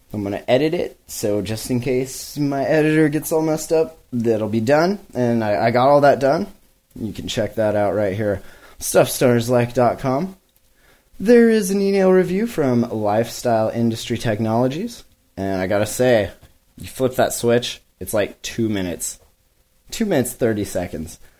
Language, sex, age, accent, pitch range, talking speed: English, male, 20-39, American, 100-135 Hz, 170 wpm